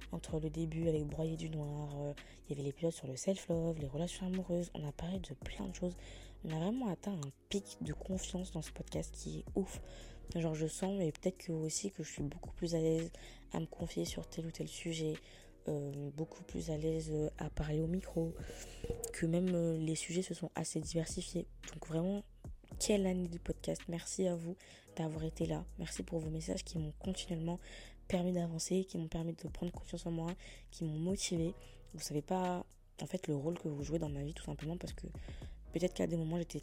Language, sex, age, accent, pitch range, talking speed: French, female, 20-39, French, 150-175 Hz, 220 wpm